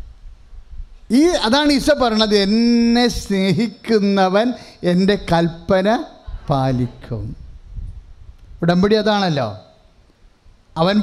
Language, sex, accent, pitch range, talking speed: English, male, Indian, 140-225 Hz, 80 wpm